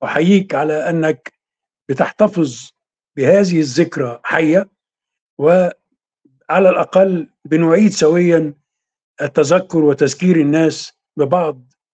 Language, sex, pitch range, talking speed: Arabic, male, 155-195 Hz, 75 wpm